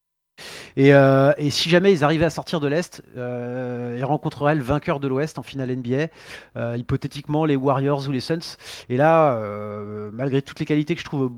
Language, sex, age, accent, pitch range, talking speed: French, male, 30-49, French, 125-160 Hz, 195 wpm